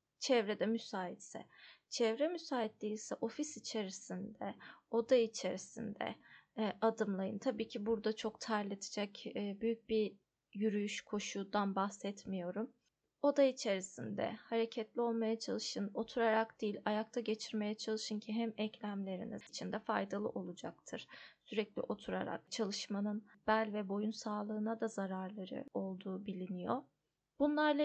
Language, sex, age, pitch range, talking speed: Turkish, female, 20-39, 205-230 Hz, 110 wpm